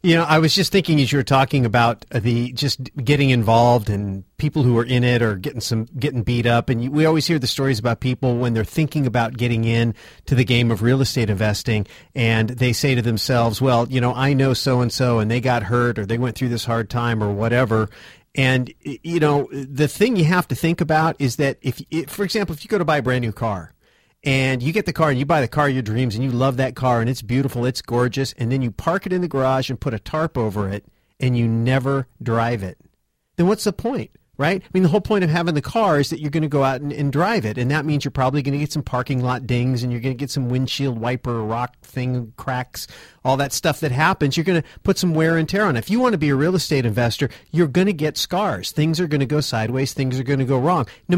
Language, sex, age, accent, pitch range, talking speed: English, male, 40-59, American, 120-150 Hz, 270 wpm